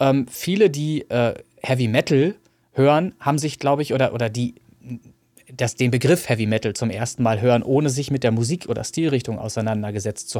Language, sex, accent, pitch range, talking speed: German, male, German, 115-135 Hz, 185 wpm